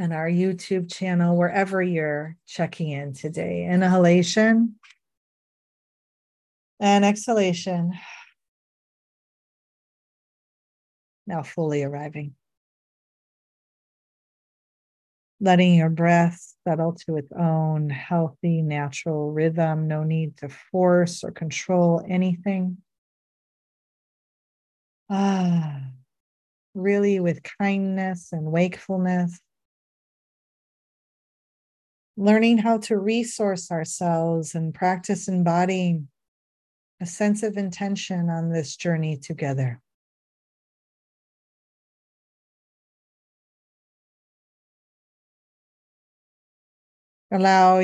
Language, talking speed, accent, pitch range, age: English, 70 wpm, American, 160-185 Hz, 40-59